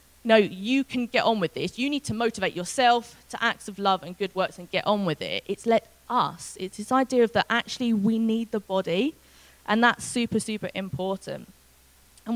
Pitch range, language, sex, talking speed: 195-275 Hz, English, female, 210 wpm